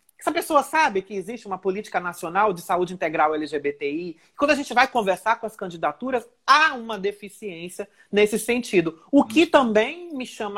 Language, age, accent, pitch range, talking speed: Portuguese, 40-59, Brazilian, 190-250 Hz, 170 wpm